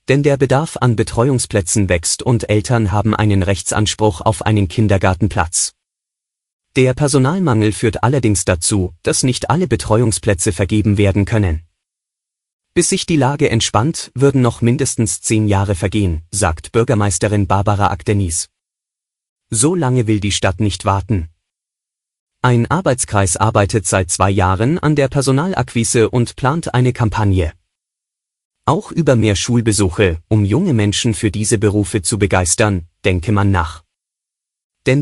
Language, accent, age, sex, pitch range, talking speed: German, German, 30-49, male, 100-125 Hz, 130 wpm